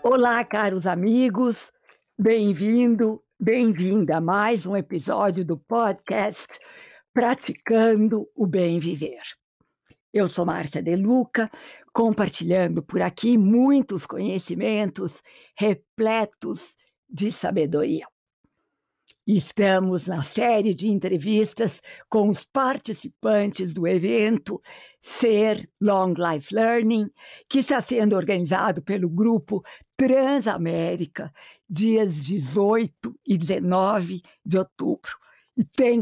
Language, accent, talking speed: Portuguese, Brazilian, 95 wpm